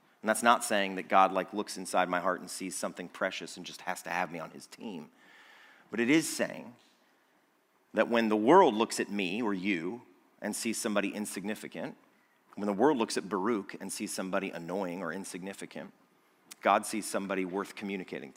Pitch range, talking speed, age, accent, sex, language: 95-115 Hz, 190 wpm, 40-59, American, male, English